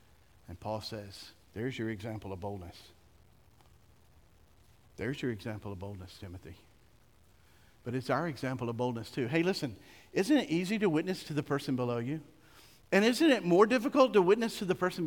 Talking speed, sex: 170 wpm, male